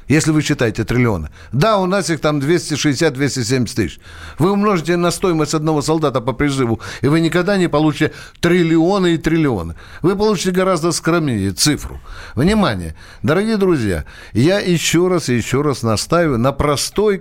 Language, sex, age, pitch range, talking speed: Russian, male, 60-79, 125-175 Hz, 150 wpm